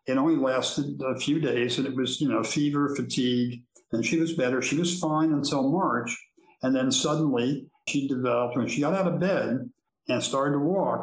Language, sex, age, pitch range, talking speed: English, male, 60-79, 125-165 Hz, 200 wpm